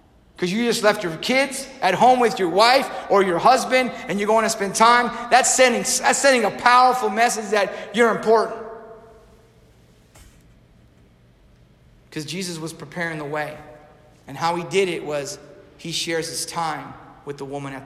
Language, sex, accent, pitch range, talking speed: English, male, American, 175-260 Hz, 165 wpm